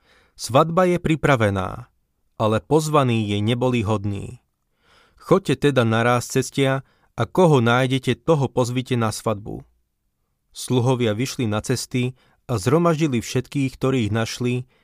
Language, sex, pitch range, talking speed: Slovak, male, 110-135 Hz, 115 wpm